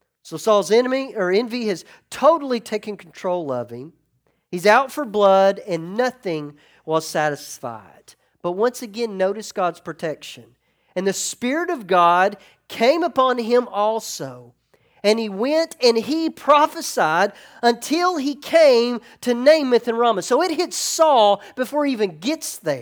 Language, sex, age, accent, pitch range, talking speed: English, male, 40-59, American, 175-280 Hz, 145 wpm